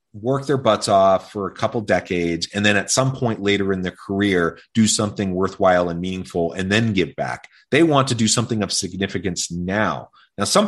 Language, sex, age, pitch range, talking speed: English, male, 30-49, 90-115 Hz, 200 wpm